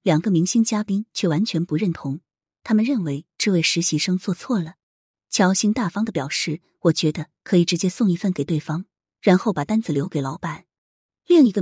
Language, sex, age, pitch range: Chinese, female, 20-39, 160-215 Hz